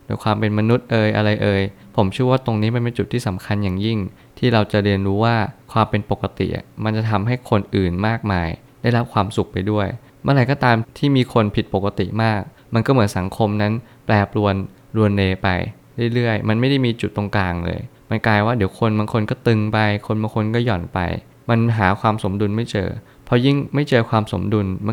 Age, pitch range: 20-39, 100-120 Hz